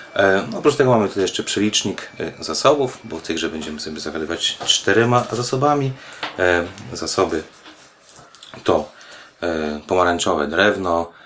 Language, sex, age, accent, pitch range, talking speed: Polish, male, 30-49, native, 80-95 Hz, 105 wpm